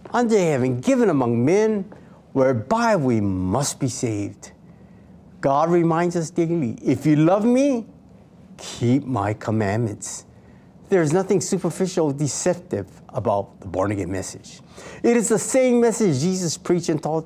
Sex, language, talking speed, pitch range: male, English, 145 wpm, 125-190 Hz